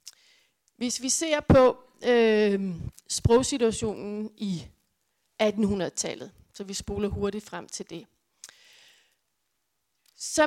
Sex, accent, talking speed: female, native, 90 wpm